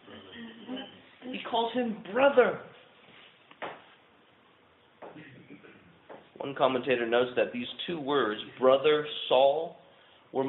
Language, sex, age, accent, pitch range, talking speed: English, male, 30-49, American, 120-190 Hz, 80 wpm